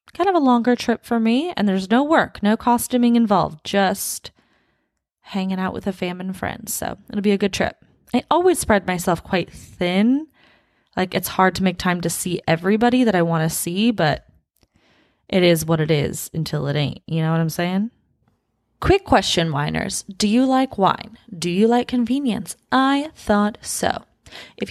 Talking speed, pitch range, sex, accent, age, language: 185 wpm, 170-235 Hz, female, American, 20-39, English